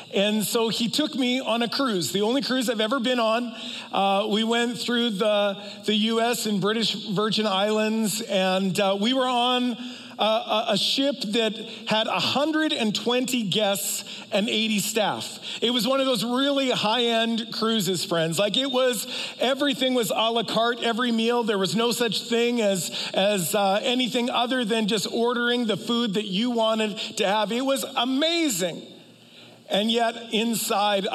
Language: English